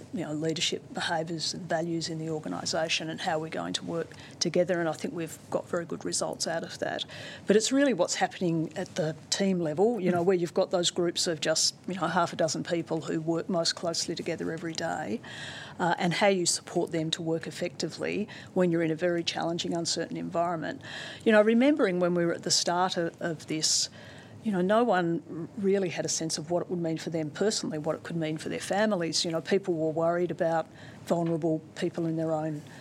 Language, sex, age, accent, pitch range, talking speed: English, female, 40-59, Australian, 160-185 Hz, 220 wpm